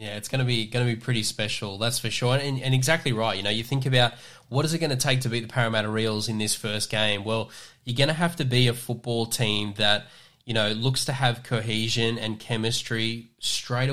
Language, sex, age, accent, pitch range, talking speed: English, male, 10-29, Australian, 110-125 Hz, 235 wpm